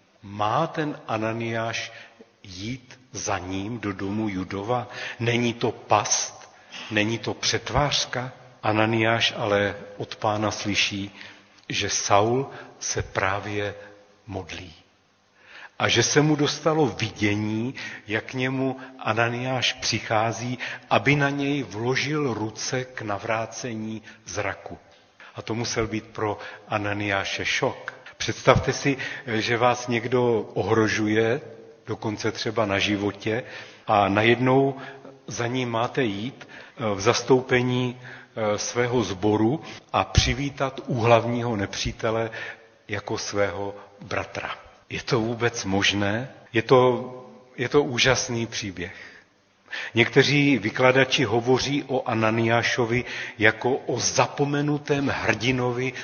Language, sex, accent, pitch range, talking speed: Czech, male, native, 105-125 Hz, 105 wpm